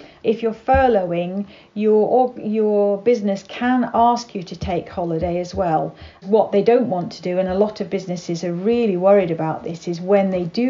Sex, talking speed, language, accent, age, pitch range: female, 195 wpm, English, British, 50-69, 190-225 Hz